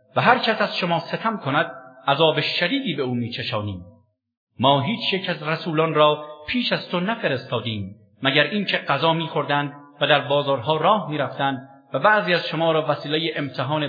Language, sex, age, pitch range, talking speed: English, male, 50-69, 130-180 Hz, 165 wpm